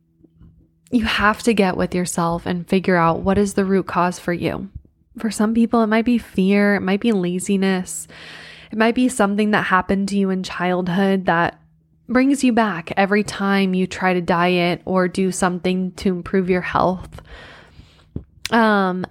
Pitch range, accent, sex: 180-205 Hz, American, female